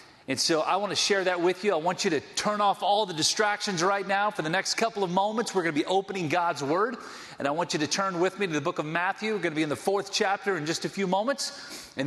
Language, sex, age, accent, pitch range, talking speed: English, male, 40-59, American, 160-200 Hz, 300 wpm